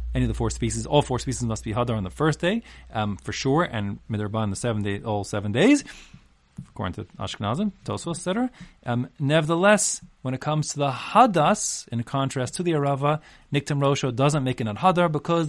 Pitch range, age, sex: 110-180 Hz, 30-49, male